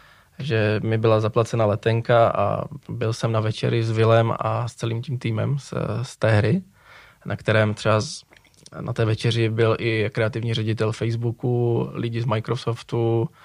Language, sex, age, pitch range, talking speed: Czech, male, 20-39, 115-130 Hz, 160 wpm